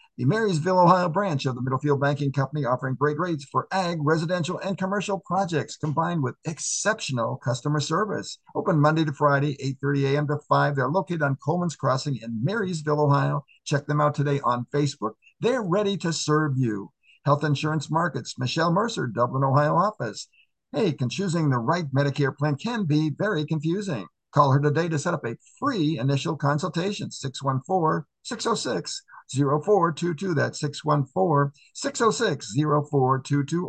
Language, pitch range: English, 140-180 Hz